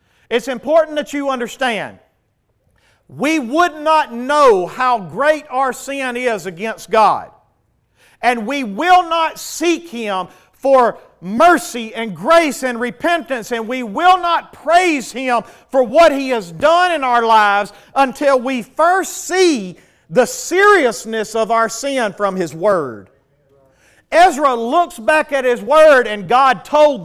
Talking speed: 140 wpm